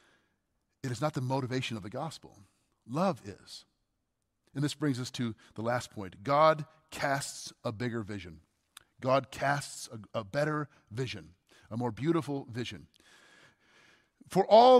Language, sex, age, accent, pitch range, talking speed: English, male, 40-59, American, 120-155 Hz, 140 wpm